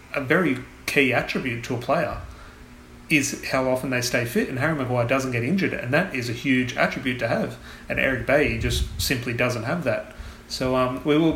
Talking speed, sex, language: 205 wpm, male, English